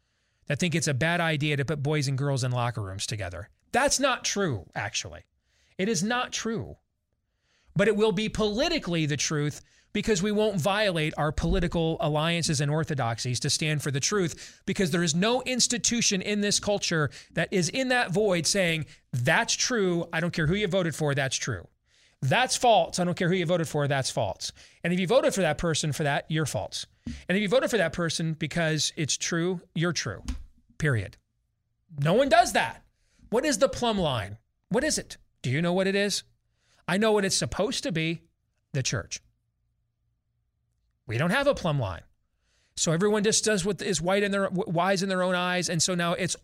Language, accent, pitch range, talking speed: English, American, 135-195 Hz, 200 wpm